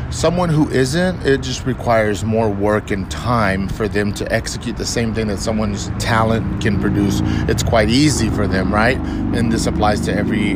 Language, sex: English, male